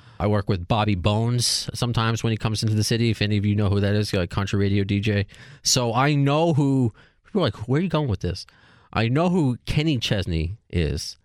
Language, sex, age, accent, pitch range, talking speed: English, male, 30-49, American, 100-130 Hz, 230 wpm